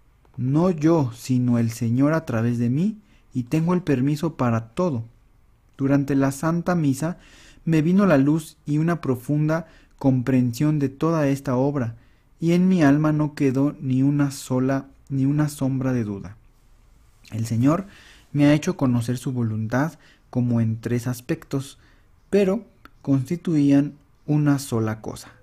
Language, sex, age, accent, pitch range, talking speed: Spanish, male, 40-59, Mexican, 120-150 Hz, 145 wpm